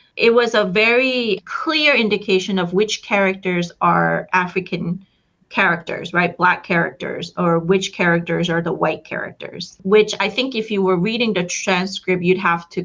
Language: English